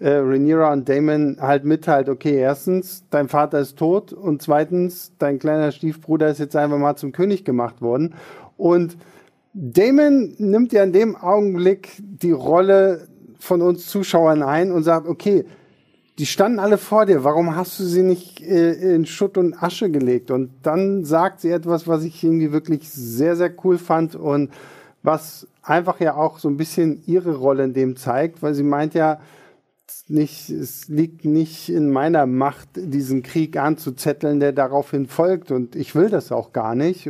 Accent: German